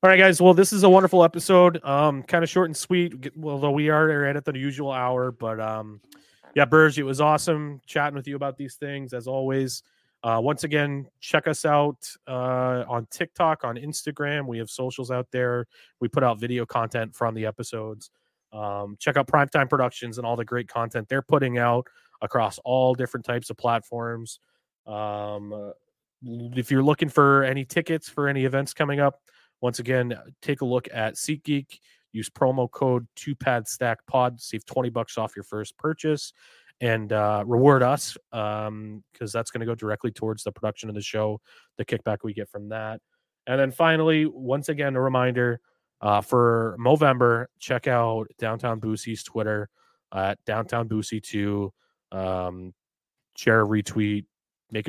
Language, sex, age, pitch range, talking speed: English, male, 30-49, 110-145 Hz, 175 wpm